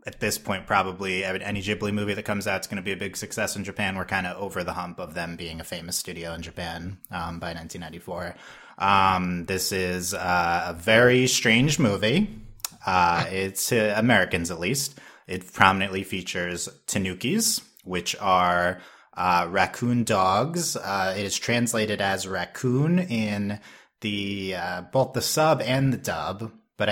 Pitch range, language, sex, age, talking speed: 90-110 Hz, English, male, 30-49, 165 wpm